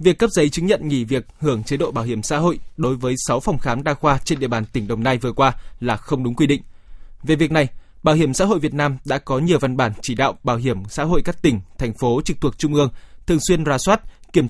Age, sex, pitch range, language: 20-39, male, 125-165 Hz, Vietnamese